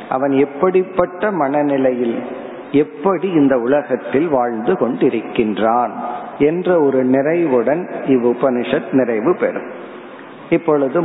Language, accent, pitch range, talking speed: Tamil, native, 135-170 Hz, 80 wpm